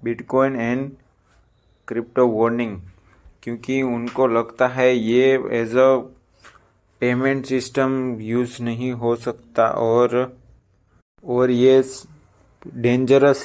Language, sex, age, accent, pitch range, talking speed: Hindi, male, 20-39, native, 115-125 Hz, 95 wpm